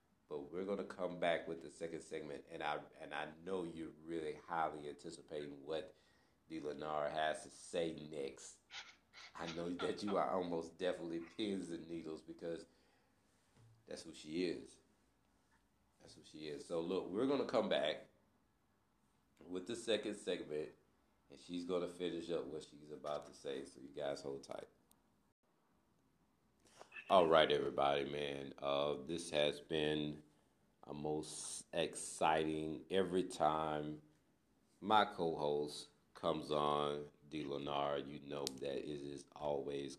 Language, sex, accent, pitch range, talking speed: English, male, American, 75-90 Hz, 145 wpm